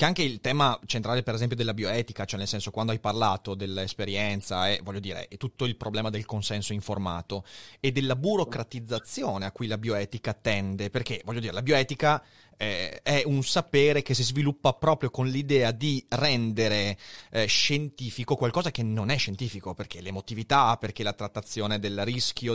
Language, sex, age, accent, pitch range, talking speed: Italian, male, 30-49, native, 110-140 Hz, 170 wpm